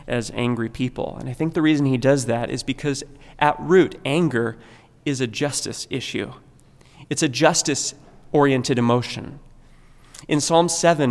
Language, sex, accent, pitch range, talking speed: English, male, American, 130-160 Hz, 145 wpm